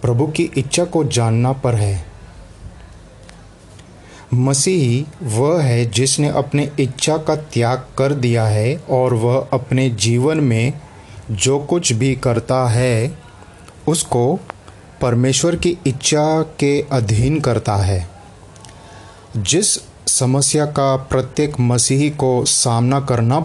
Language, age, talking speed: Hindi, 30-49, 115 wpm